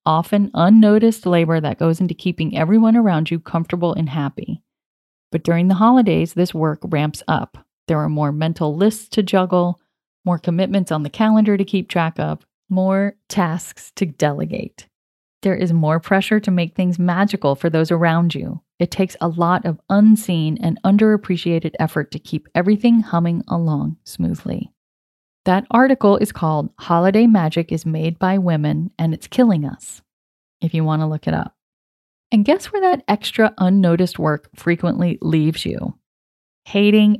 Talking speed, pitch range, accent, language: 160 wpm, 160-205 Hz, American, English